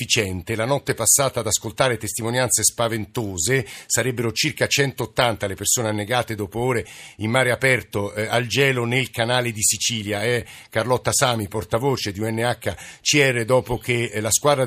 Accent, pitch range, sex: native, 110-130 Hz, male